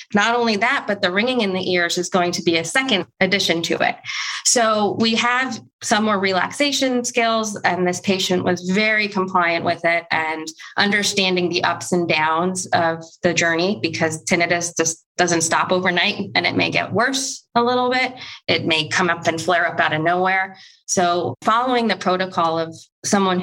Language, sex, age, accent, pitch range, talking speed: English, female, 20-39, American, 170-205 Hz, 185 wpm